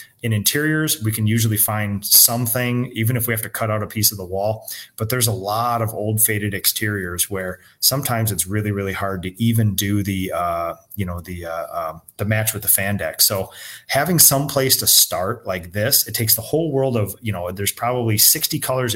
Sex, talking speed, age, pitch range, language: male, 220 wpm, 30-49, 100-125 Hz, English